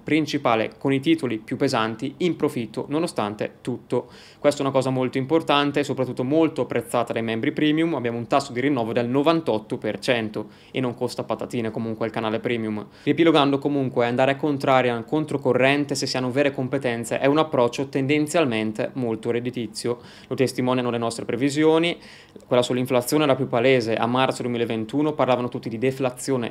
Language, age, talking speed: Italian, 20-39, 160 wpm